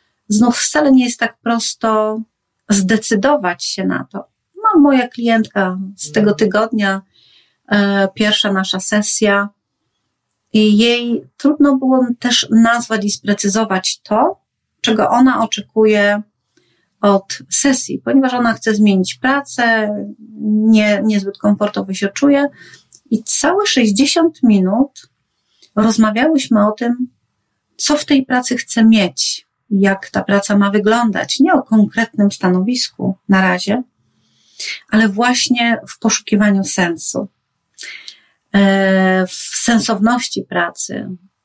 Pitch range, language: 195-240 Hz, Polish